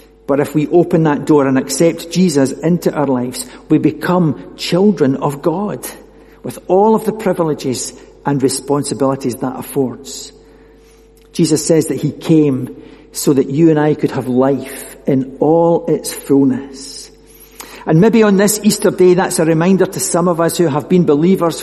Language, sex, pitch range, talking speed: English, male, 135-180 Hz, 165 wpm